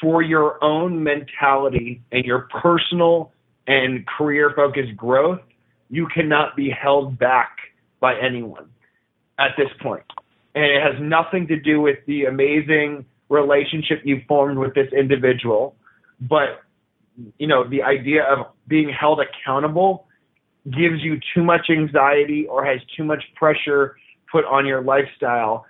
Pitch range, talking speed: 135-155 Hz, 135 wpm